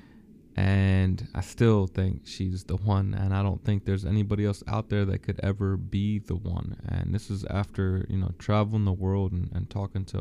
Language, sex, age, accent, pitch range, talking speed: English, male, 20-39, American, 95-105 Hz, 205 wpm